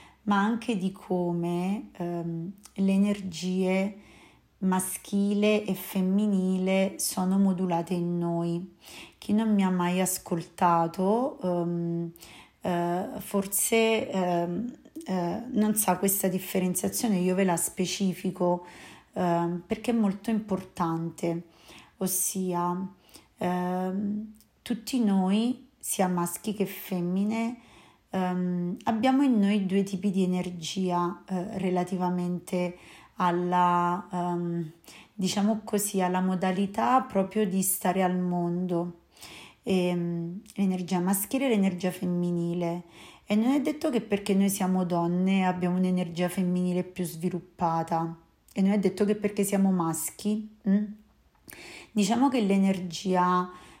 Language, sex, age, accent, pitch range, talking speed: Italian, female, 30-49, native, 175-205 Hz, 105 wpm